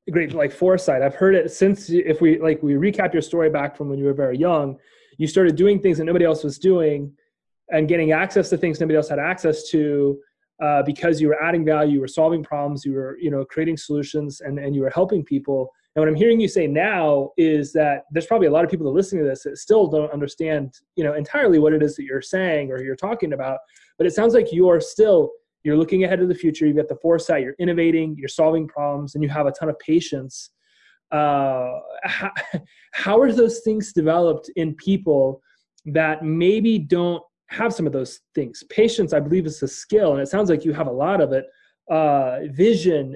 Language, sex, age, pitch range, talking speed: English, male, 30-49, 145-190 Hz, 225 wpm